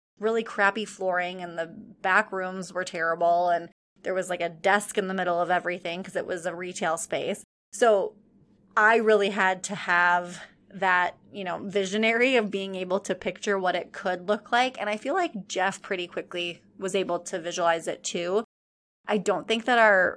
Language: English